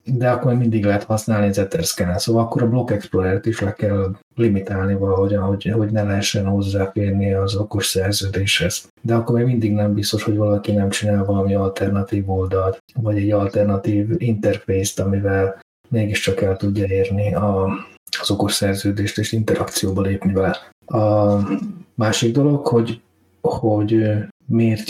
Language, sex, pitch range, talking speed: Hungarian, male, 100-115 Hz, 135 wpm